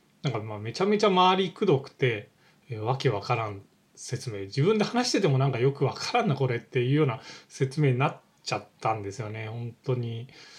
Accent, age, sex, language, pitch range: native, 20-39, male, Japanese, 120-150 Hz